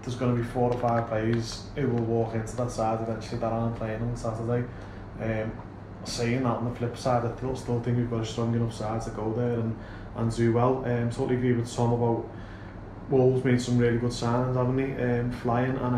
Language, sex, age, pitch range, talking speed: English, male, 20-39, 110-125 Hz, 225 wpm